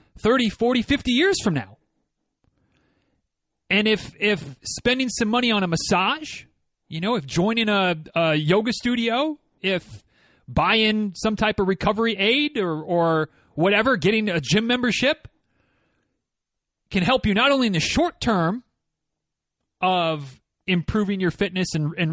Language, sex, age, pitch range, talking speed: English, male, 30-49, 180-240 Hz, 140 wpm